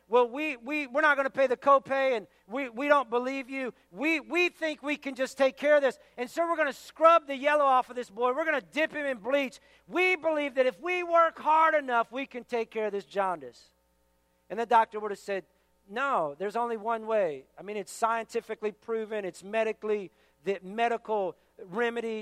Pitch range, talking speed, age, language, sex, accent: 200-275 Hz, 220 wpm, 50-69, English, male, American